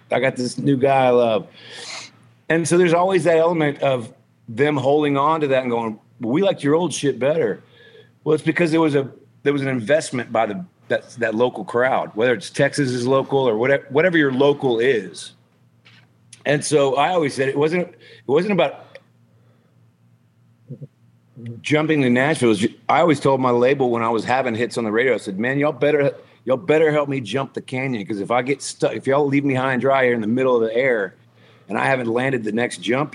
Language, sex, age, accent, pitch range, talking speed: English, male, 40-59, American, 120-150 Hz, 215 wpm